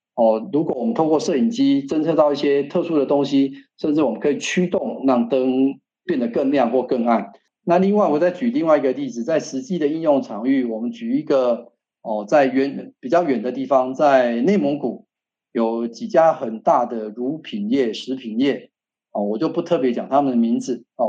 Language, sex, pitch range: Chinese, male, 125-185 Hz